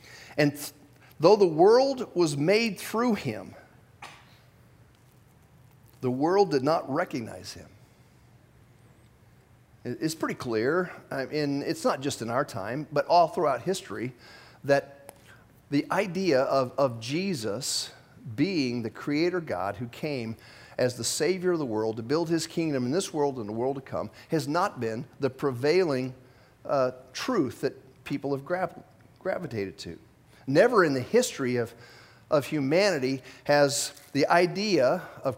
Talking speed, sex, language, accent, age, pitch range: 140 wpm, male, English, American, 50-69, 120-170 Hz